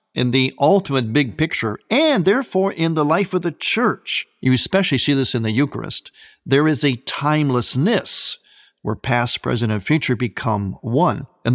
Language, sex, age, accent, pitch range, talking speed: English, male, 50-69, American, 120-155 Hz, 165 wpm